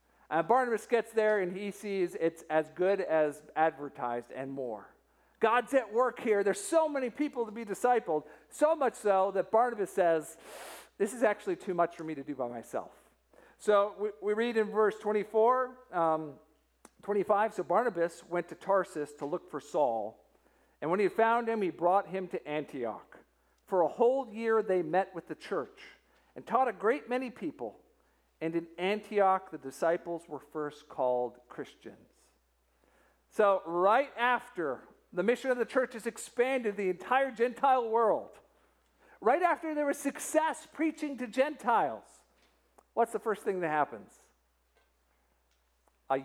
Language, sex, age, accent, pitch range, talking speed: English, male, 50-69, American, 155-235 Hz, 160 wpm